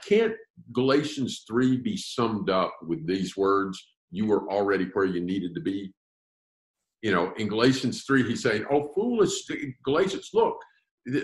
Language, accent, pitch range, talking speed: English, American, 100-145 Hz, 150 wpm